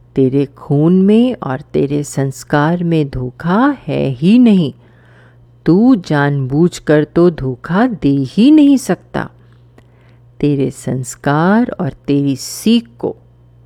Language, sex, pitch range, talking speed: Hindi, female, 120-175 Hz, 110 wpm